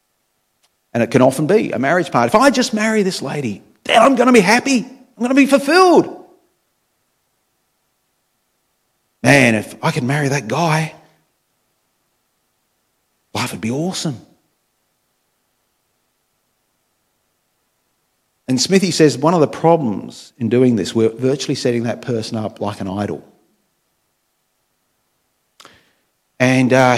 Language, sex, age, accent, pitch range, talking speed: English, male, 50-69, Australian, 120-165 Hz, 125 wpm